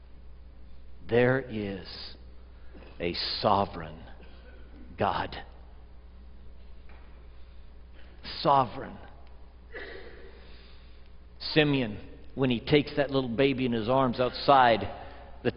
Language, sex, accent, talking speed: English, male, American, 70 wpm